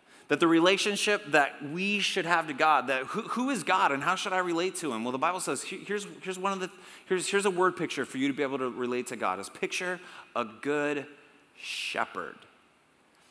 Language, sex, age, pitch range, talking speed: English, male, 30-49, 125-160 Hz, 220 wpm